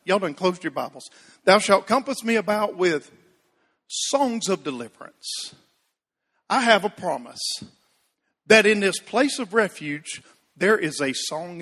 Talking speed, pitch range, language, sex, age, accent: 145 wpm, 180-240 Hz, English, male, 50-69, American